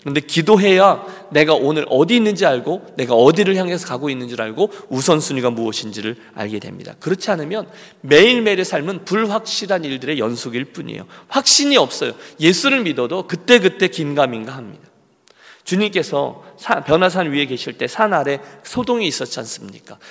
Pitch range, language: 130-195 Hz, Korean